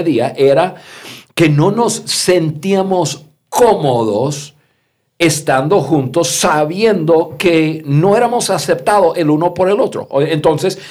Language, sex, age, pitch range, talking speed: Spanish, male, 50-69, 120-170 Hz, 110 wpm